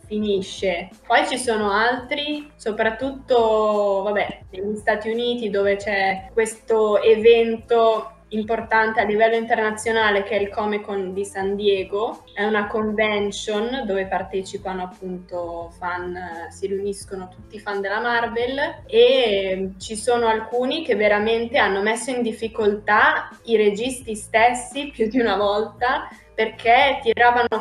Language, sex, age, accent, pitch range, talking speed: Italian, female, 20-39, native, 200-235 Hz, 130 wpm